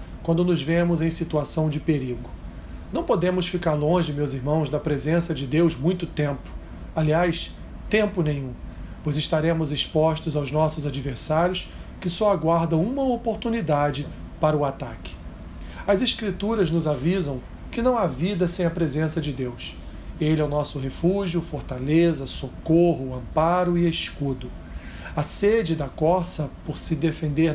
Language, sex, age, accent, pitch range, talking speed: Portuguese, male, 40-59, Brazilian, 145-175 Hz, 145 wpm